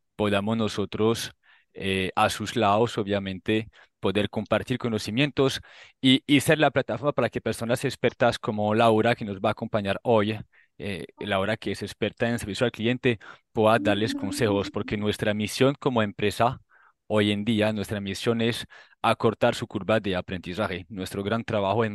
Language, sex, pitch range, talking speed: Spanish, male, 100-120 Hz, 160 wpm